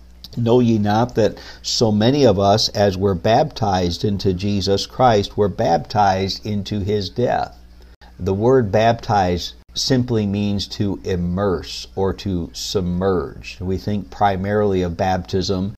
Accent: American